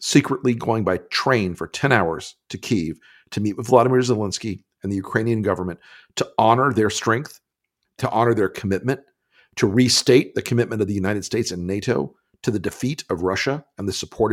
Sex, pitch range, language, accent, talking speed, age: male, 100-130 Hz, English, American, 185 wpm, 50-69